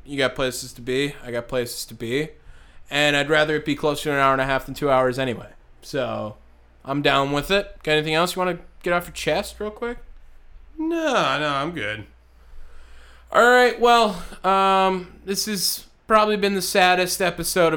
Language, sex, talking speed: English, male, 195 wpm